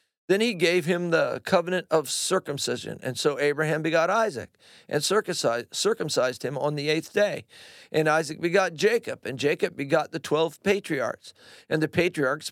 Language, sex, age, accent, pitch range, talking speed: English, male, 50-69, American, 150-190 Hz, 160 wpm